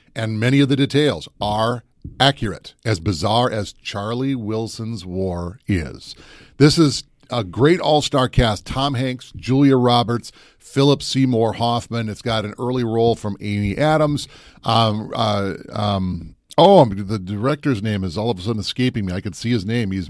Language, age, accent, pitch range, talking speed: English, 40-59, American, 110-145 Hz, 165 wpm